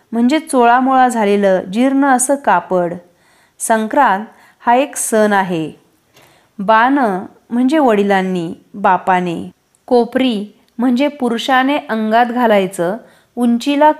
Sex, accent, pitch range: female, native, 190-250 Hz